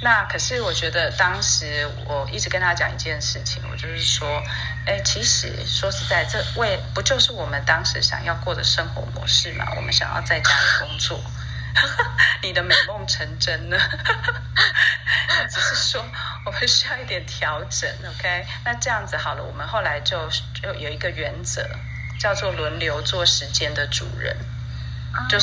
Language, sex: Chinese, female